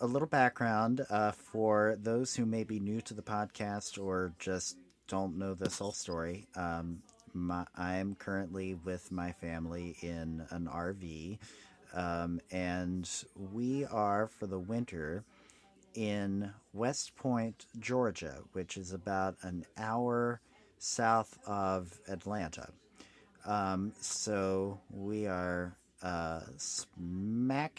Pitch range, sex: 95-115 Hz, male